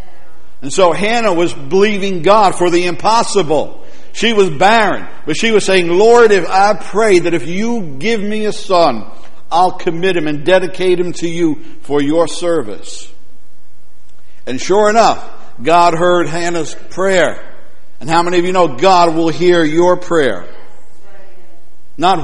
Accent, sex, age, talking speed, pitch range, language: American, male, 60-79, 155 wpm, 165-205 Hz, English